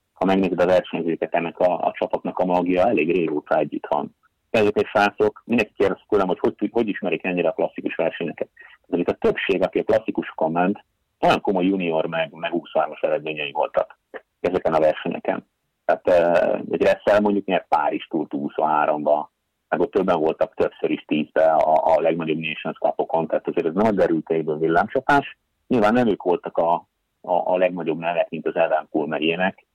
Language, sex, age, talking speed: Hungarian, male, 30-49, 165 wpm